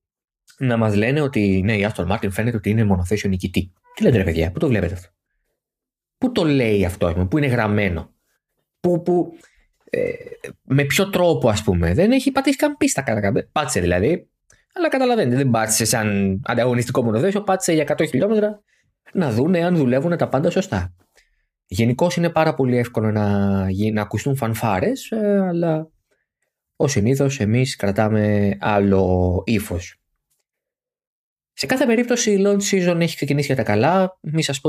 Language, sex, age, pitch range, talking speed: Greek, male, 20-39, 100-160 Hz, 155 wpm